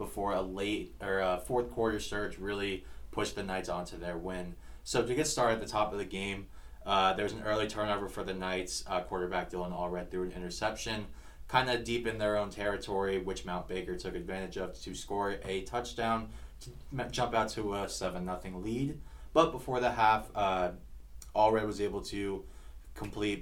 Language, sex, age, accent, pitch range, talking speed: English, male, 20-39, American, 90-105 Hz, 195 wpm